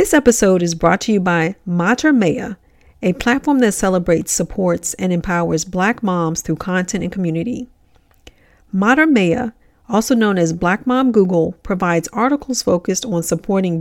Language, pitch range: English, 175-230 Hz